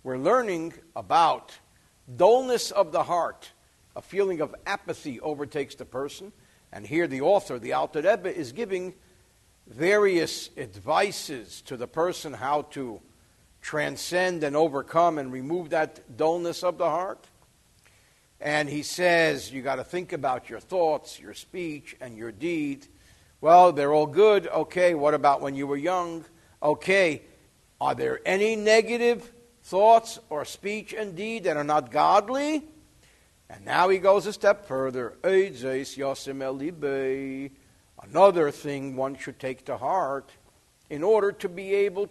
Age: 60-79